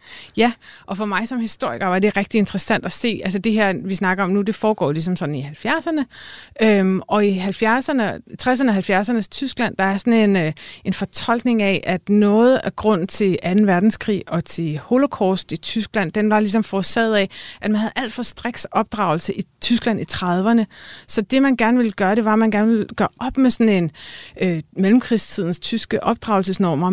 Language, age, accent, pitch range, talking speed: Danish, 30-49, native, 190-230 Hz, 190 wpm